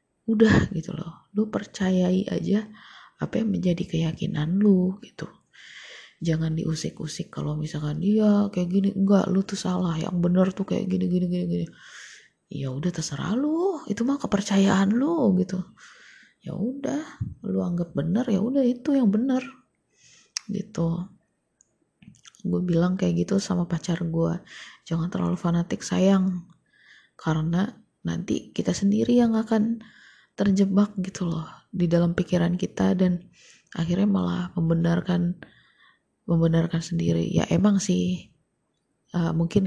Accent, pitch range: native, 165-200 Hz